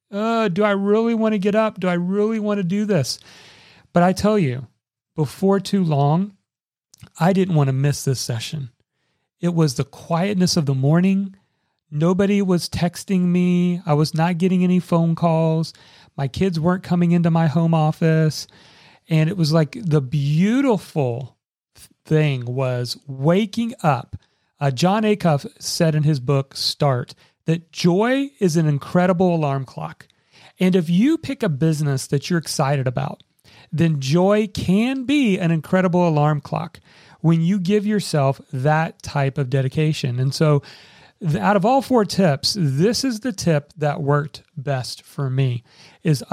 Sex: male